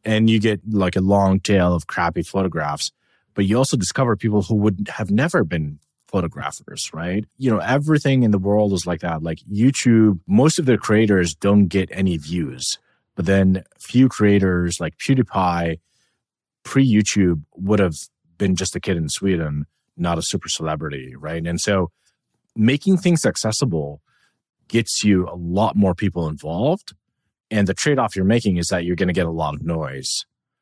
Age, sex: 30-49, male